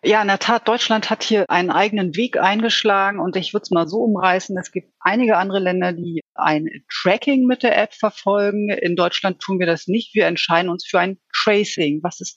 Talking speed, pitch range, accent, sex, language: 215 wpm, 175-215 Hz, German, female, German